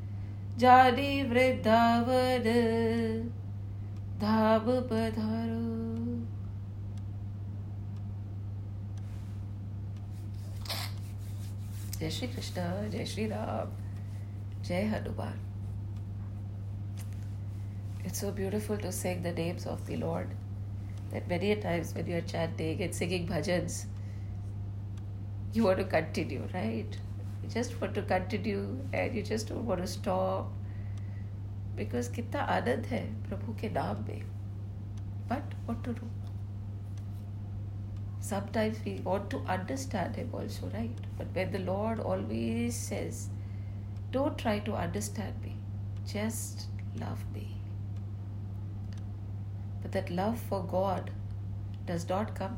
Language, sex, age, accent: English, female, 30-49, Indian